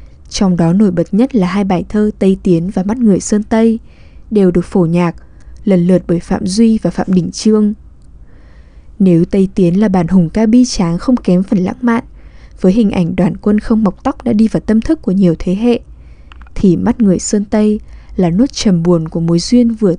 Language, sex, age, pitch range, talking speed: Vietnamese, female, 10-29, 175-220 Hz, 220 wpm